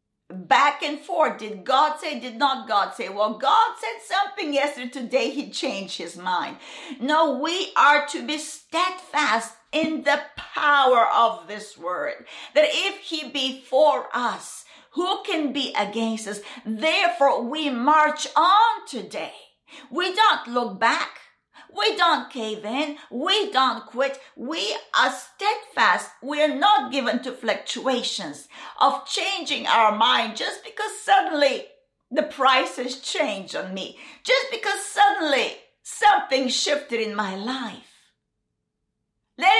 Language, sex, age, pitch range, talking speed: English, female, 50-69, 250-360 Hz, 135 wpm